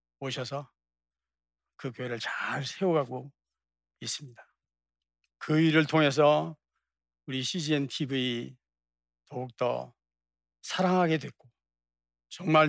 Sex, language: male, Korean